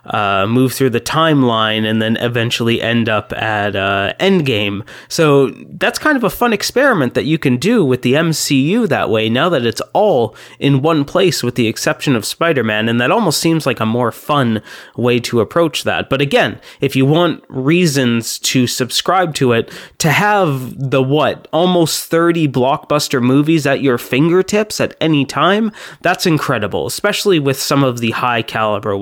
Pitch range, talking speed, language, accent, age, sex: 115-155 Hz, 175 wpm, English, American, 20-39, male